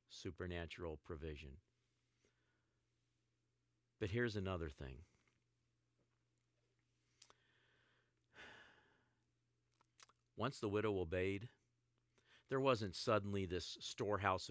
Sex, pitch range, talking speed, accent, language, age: male, 90-115 Hz, 60 wpm, American, English, 50-69